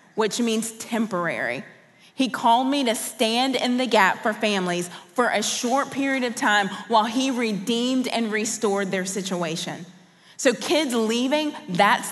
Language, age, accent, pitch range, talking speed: English, 30-49, American, 185-250 Hz, 150 wpm